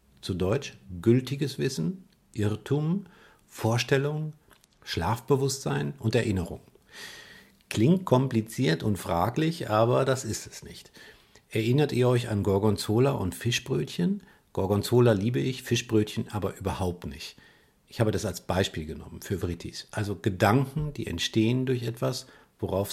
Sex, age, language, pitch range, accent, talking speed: male, 50-69, German, 95-130 Hz, German, 125 wpm